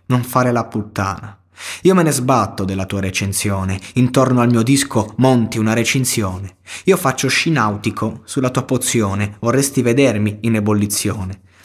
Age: 20-39